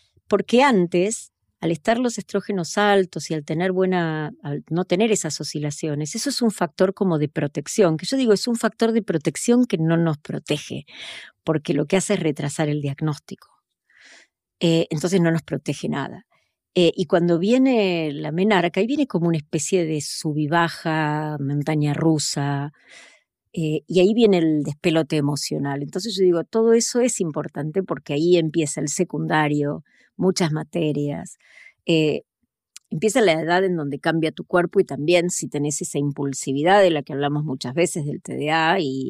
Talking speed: 165 wpm